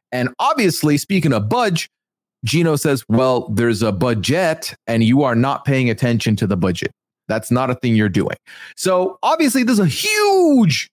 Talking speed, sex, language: 170 wpm, male, English